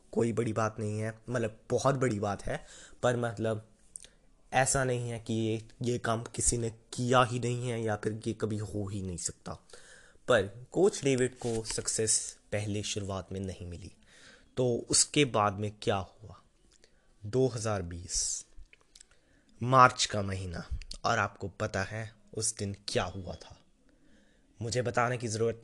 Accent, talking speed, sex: native, 155 wpm, male